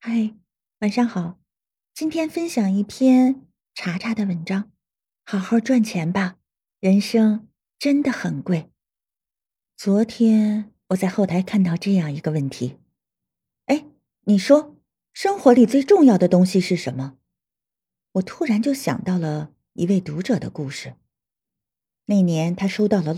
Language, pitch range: Chinese, 170-230 Hz